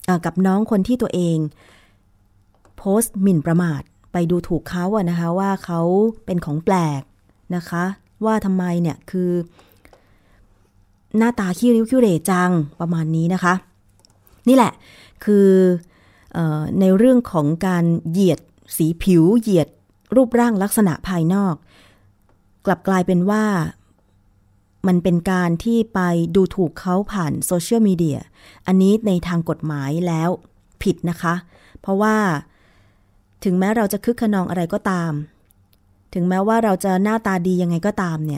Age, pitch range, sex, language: 20-39, 160-195 Hz, female, Thai